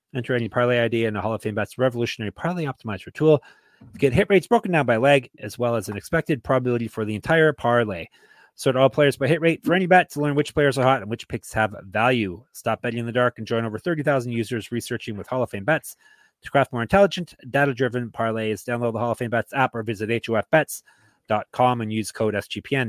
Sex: male